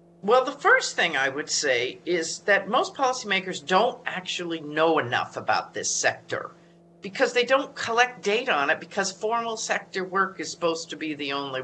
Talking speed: 180 wpm